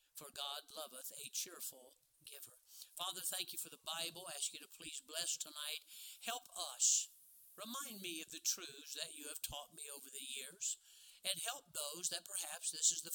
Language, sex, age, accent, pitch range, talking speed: English, male, 50-69, American, 155-185 Hz, 185 wpm